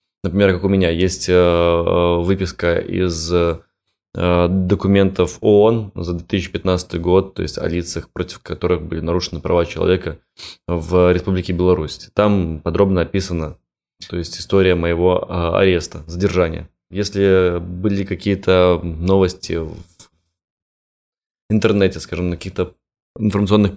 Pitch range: 85-95 Hz